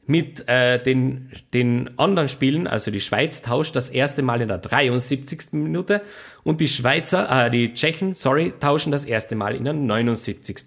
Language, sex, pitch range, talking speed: German, male, 125-165 Hz, 175 wpm